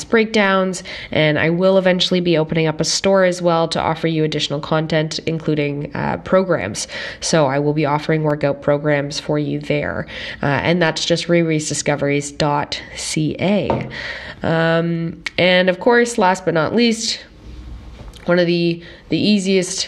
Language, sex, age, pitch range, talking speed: English, female, 20-39, 150-175 Hz, 145 wpm